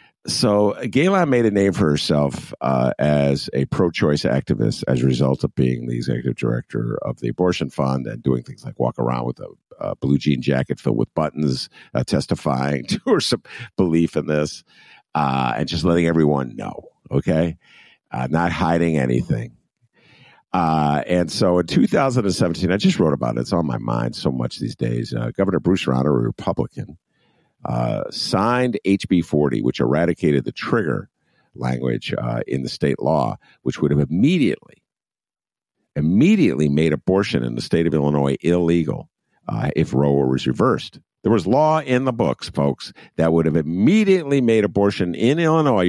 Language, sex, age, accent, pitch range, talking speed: English, male, 50-69, American, 70-100 Hz, 170 wpm